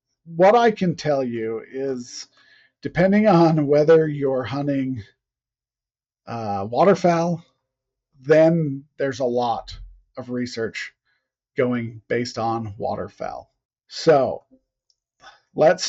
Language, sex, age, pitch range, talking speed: English, male, 40-59, 130-150 Hz, 95 wpm